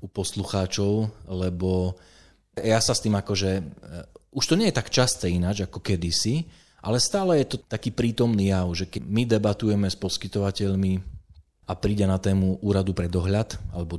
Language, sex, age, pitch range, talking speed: Slovak, male, 20-39, 90-110 Hz, 165 wpm